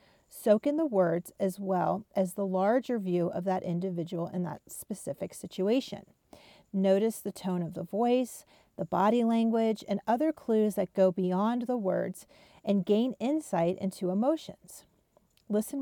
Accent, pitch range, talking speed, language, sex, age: American, 185-230 Hz, 150 wpm, English, female, 40-59